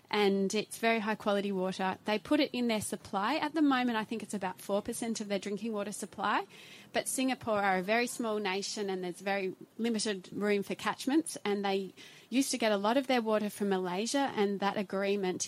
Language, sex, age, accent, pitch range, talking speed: English, female, 30-49, Australian, 195-240 Hz, 210 wpm